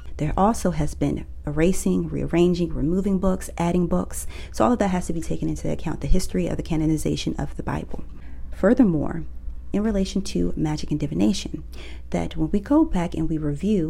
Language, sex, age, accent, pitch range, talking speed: English, female, 30-49, American, 150-190 Hz, 185 wpm